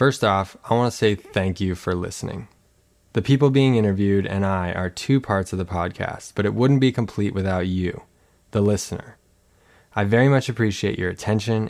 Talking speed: 190 wpm